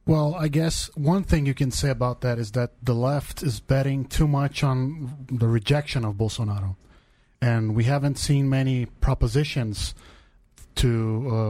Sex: male